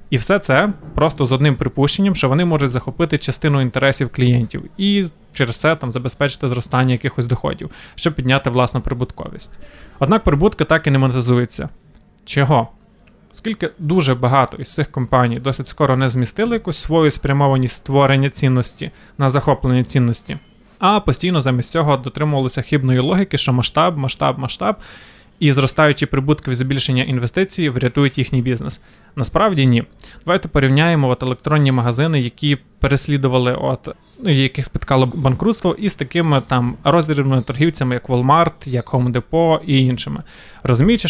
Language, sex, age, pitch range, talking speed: Ukrainian, male, 20-39, 130-155 Hz, 140 wpm